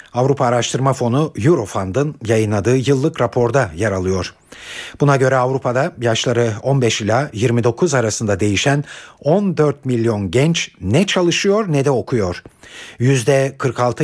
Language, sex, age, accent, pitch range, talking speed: Turkish, male, 50-69, native, 110-150 Hz, 115 wpm